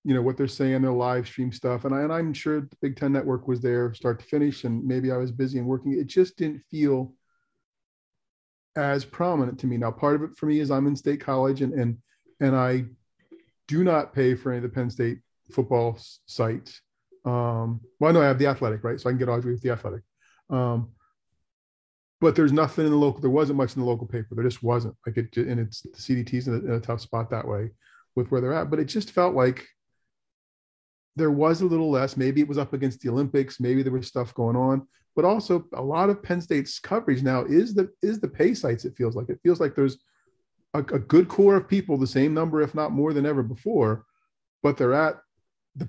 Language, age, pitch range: English, 40-59, 120-150 Hz